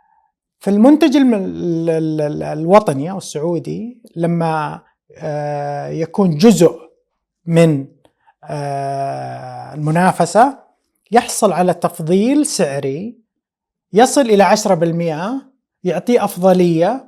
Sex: male